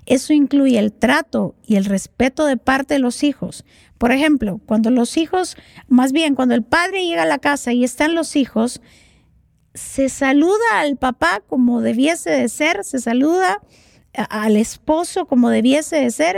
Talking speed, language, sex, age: 170 wpm, Spanish, female, 50-69